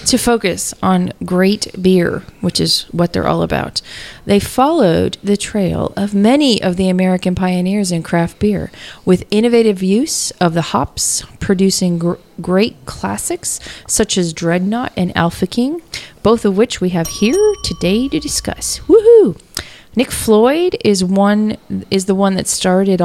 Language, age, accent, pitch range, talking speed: English, 30-49, American, 185-235 Hz, 155 wpm